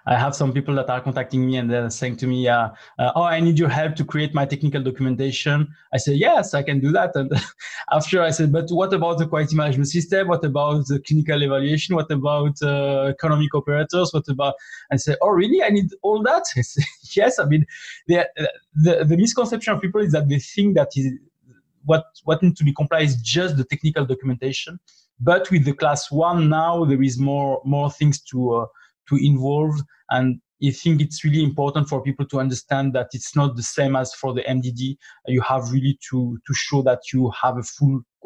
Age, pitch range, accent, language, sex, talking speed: 20-39, 130-155 Hz, French, English, male, 215 wpm